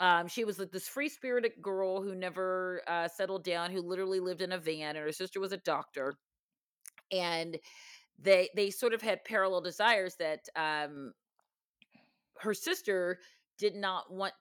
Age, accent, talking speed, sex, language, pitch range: 40-59, American, 160 wpm, female, English, 170-205 Hz